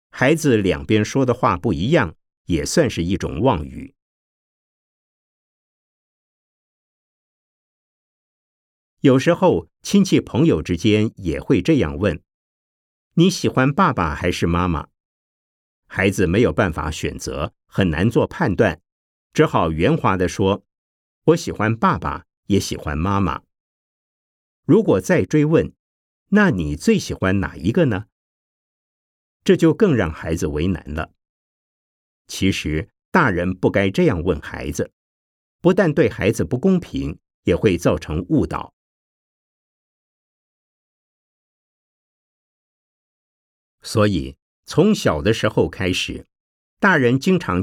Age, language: 50-69, Chinese